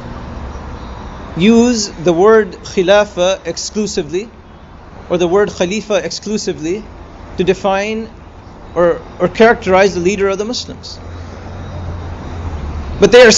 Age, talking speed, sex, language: 40-59, 105 wpm, male, English